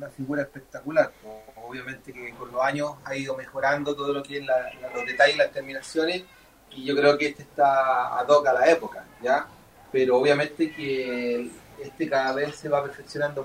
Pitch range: 135-180 Hz